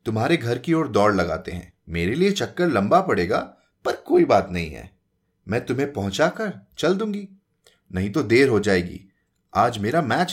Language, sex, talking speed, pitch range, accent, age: Hindi, male, 175 wpm, 95-155 Hz, native, 30-49